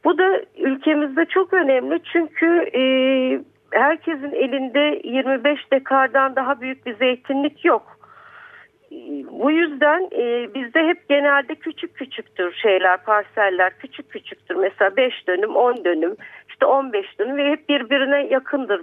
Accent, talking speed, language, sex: native, 120 wpm, Turkish, female